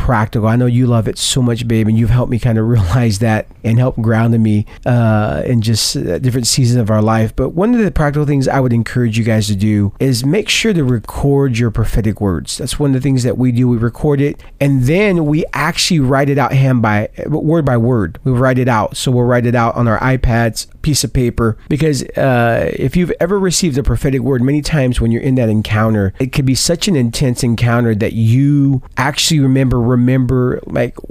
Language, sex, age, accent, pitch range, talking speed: English, male, 40-59, American, 115-140 Hz, 225 wpm